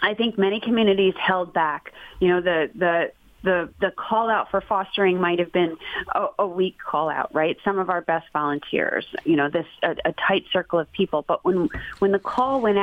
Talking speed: 210 wpm